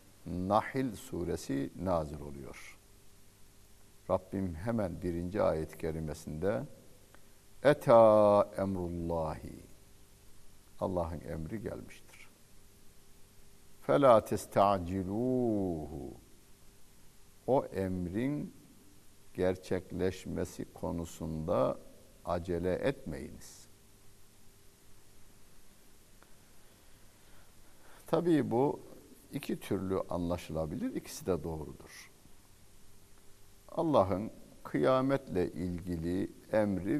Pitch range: 85-100 Hz